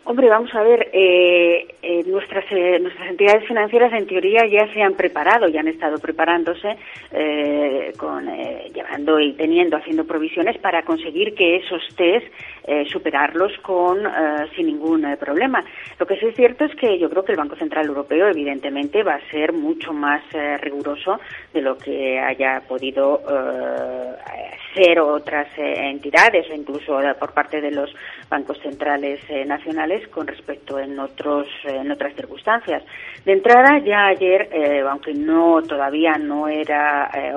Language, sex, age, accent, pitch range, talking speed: Spanish, female, 30-49, Spanish, 140-185 Hz, 165 wpm